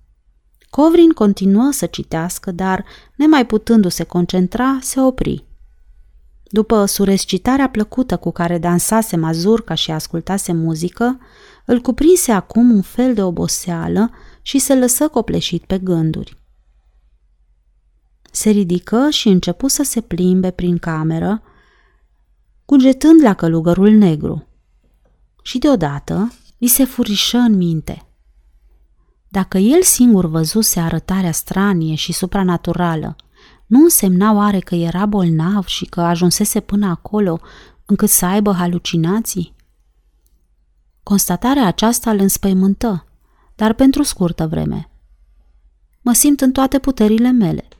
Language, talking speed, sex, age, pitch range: Romanian, 115 wpm, female, 30-49, 160-230 Hz